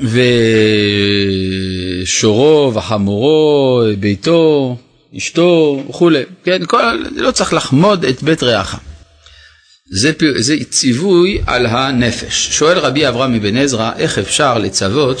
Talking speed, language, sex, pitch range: 105 wpm, Hebrew, male, 115-180 Hz